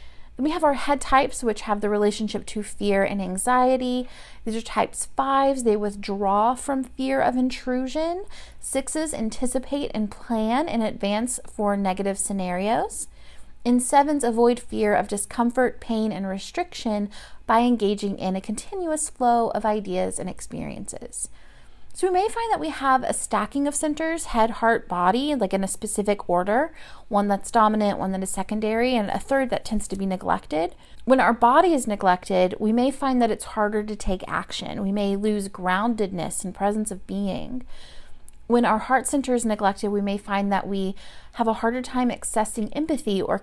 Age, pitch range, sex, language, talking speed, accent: 30-49, 200-255 Hz, female, English, 175 wpm, American